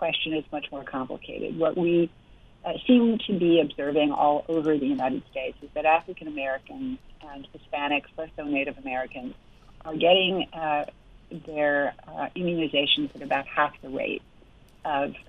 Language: English